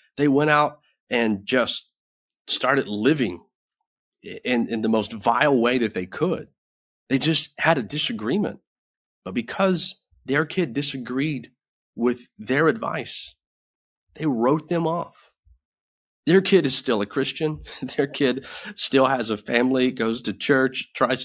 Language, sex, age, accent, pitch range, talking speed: English, male, 30-49, American, 100-135 Hz, 140 wpm